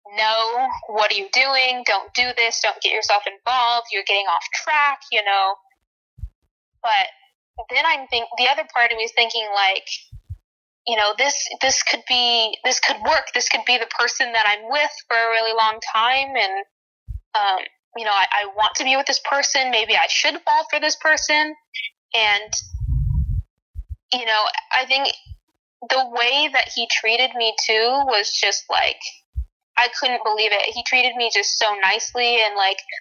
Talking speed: 180 wpm